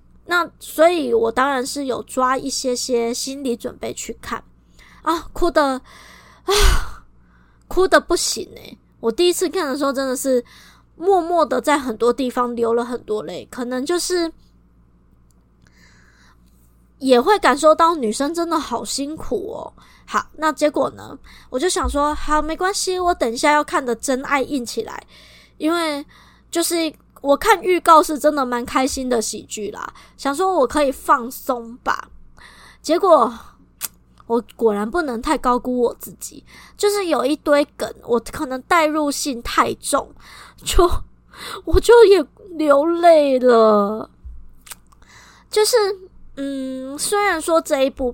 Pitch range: 235-325 Hz